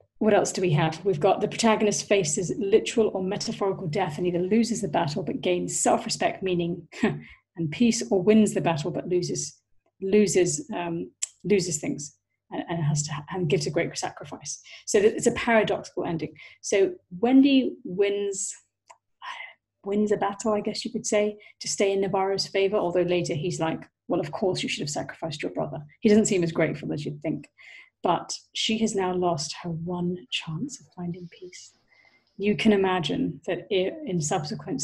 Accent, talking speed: British, 180 wpm